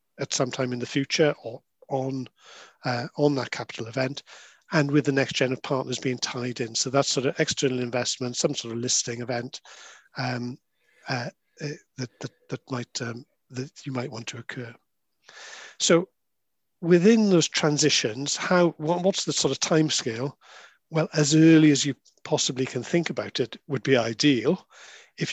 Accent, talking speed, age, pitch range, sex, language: British, 170 wpm, 50-69, 125-155 Hz, male, English